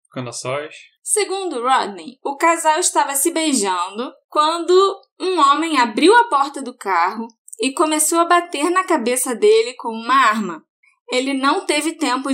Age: 10-29